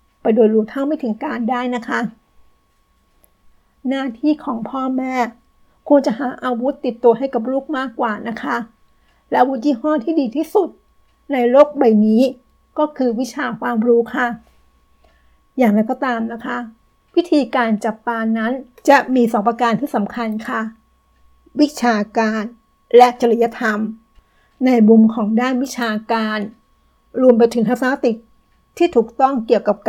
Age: 60-79